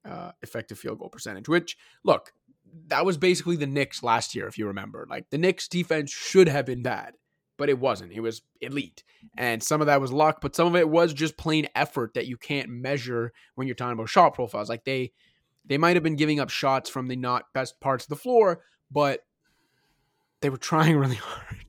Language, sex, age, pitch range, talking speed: English, male, 20-39, 125-155 Hz, 215 wpm